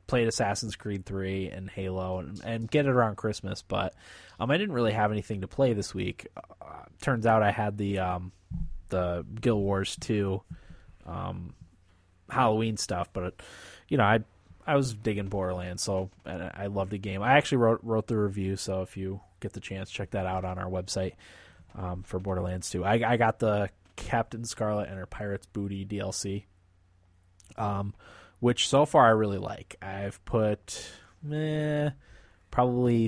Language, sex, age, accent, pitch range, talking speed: English, male, 20-39, American, 95-115 Hz, 170 wpm